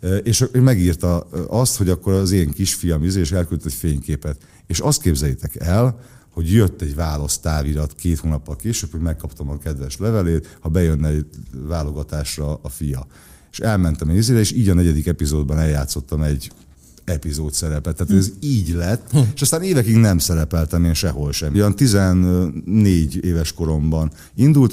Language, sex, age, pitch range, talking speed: Hungarian, male, 50-69, 80-95 Hz, 155 wpm